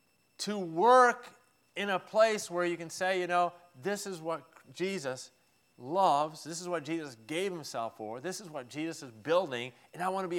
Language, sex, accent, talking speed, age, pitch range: English, male, American, 195 wpm, 40-59, 115-165 Hz